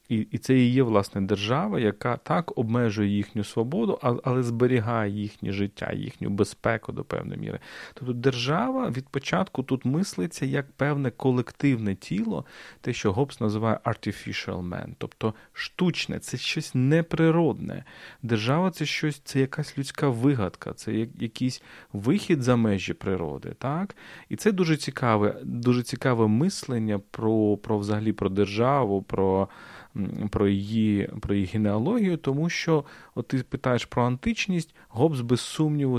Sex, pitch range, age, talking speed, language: male, 105-140 Hz, 30-49, 140 wpm, Ukrainian